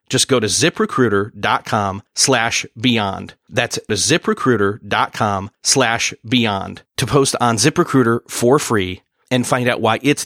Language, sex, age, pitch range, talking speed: English, male, 30-49, 110-150 Hz, 125 wpm